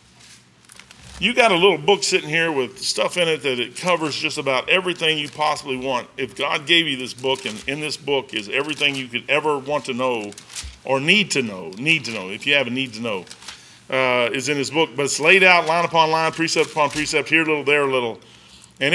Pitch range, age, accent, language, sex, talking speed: 130-160 Hz, 40-59, American, English, male, 235 wpm